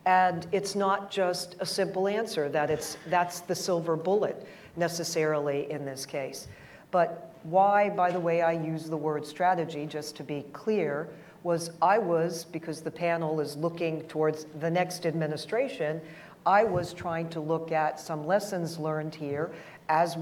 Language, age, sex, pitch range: English, 50-69, female, 160-195 Hz